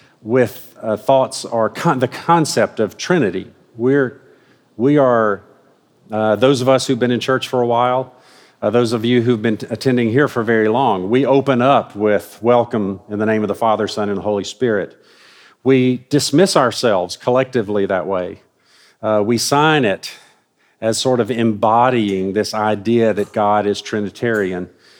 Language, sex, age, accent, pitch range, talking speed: English, male, 50-69, American, 105-130 Hz, 165 wpm